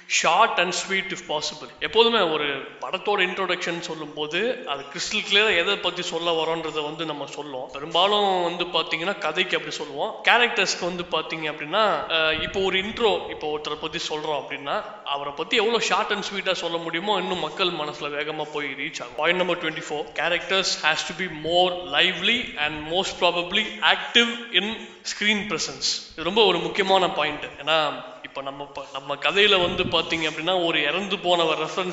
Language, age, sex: Thai, 20-39, male